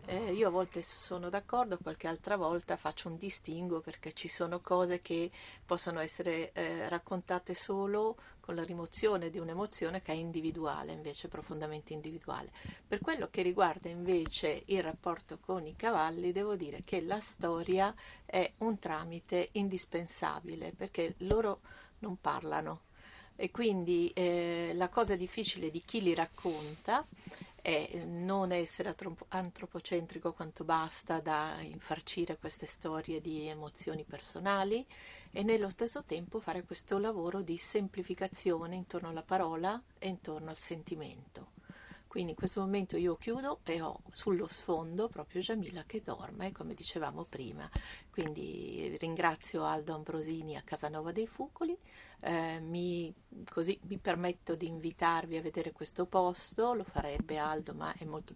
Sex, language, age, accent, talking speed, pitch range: female, Italian, 50-69, native, 140 wpm, 165-195 Hz